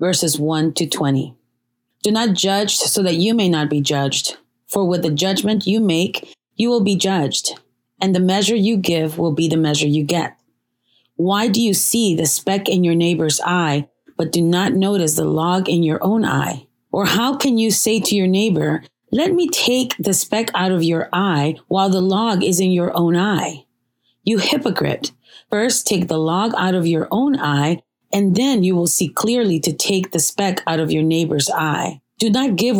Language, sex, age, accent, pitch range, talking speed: English, female, 30-49, American, 160-200 Hz, 200 wpm